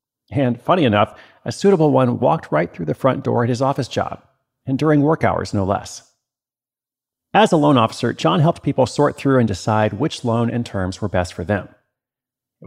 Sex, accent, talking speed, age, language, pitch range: male, American, 200 wpm, 40-59, English, 105-135 Hz